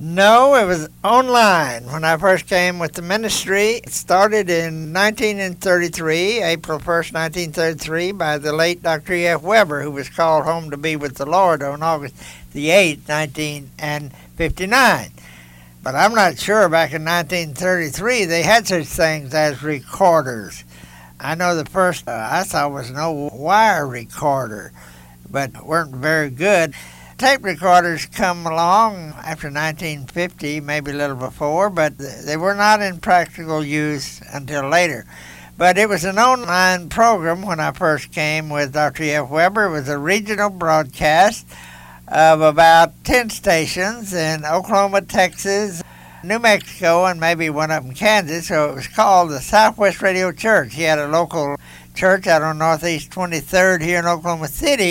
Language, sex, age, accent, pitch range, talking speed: English, male, 60-79, American, 150-185 Hz, 155 wpm